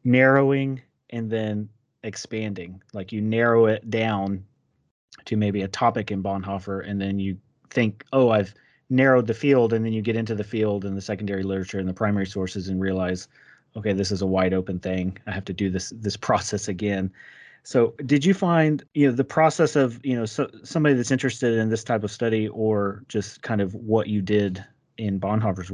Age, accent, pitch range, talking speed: 30-49, American, 95-120 Hz, 200 wpm